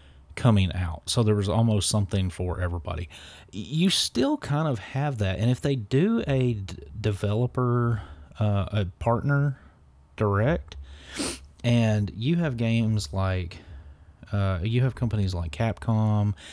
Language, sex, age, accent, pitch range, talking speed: English, male, 30-49, American, 85-105 Hz, 130 wpm